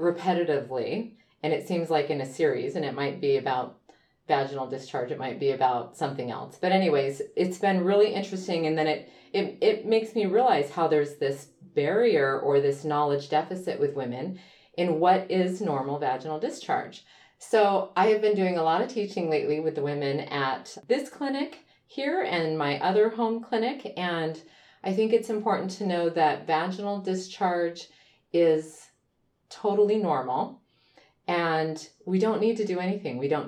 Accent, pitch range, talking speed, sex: American, 145-195 Hz, 170 wpm, female